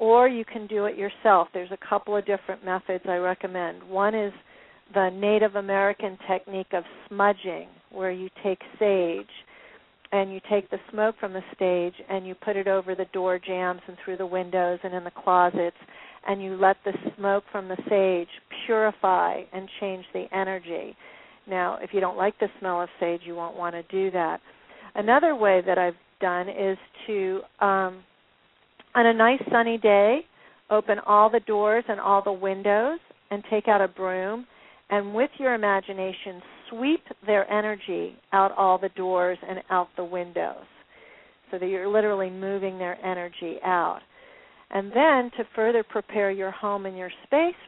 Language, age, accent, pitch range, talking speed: English, 50-69, American, 185-215 Hz, 170 wpm